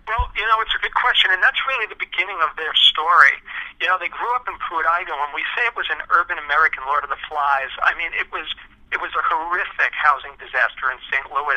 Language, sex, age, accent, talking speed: English, male, 50-69, American, 245 wpm